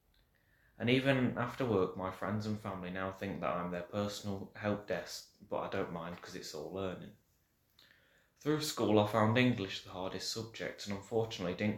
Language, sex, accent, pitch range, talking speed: English, male, British, 95-115 Hz, 180 wpm